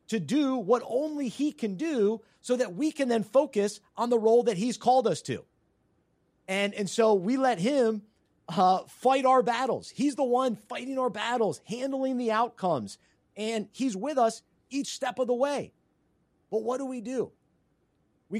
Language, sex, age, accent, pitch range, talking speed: English, male, 30-49, American, 180-235 Hz, 180 wpm